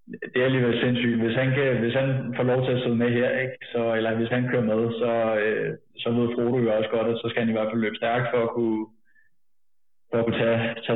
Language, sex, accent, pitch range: Danish, male, native, 115-125 Hz